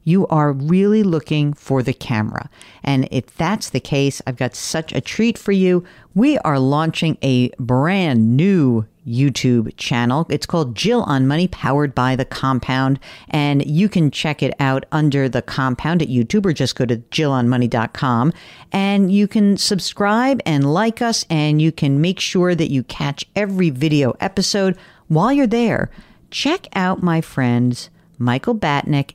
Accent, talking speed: American, 165 wpm